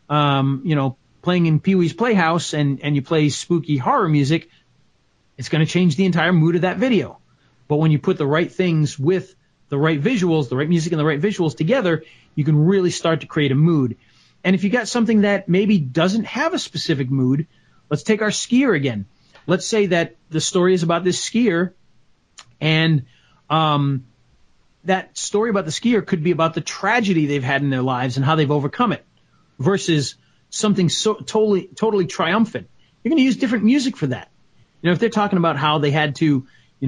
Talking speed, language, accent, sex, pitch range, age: 205 wpm, English, American, male, 150-200 Hz, 40-59